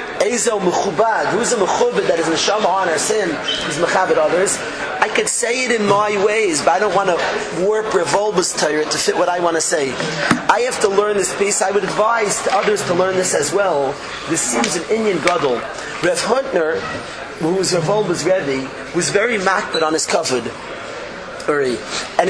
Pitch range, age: 180-220 Hz, 30-49